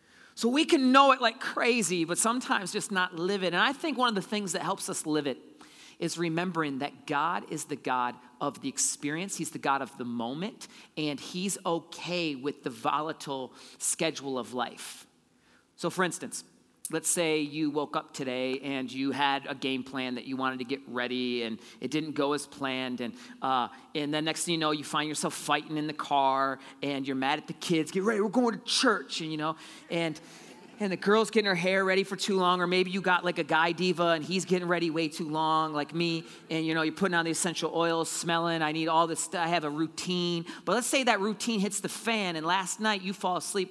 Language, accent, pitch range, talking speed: English, American, 145-185 Hz, 230 wpm